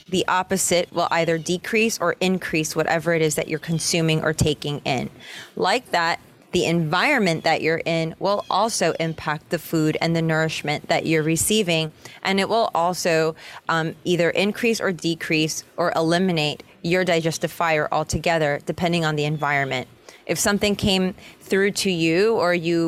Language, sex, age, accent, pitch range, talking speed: English, female, 20-39, American, 160-190 Hz, 160 wpm